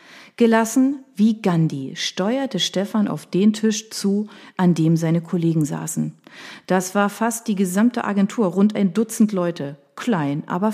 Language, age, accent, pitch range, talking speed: German, 40-59, German, 165-220 Hz, 145 wpm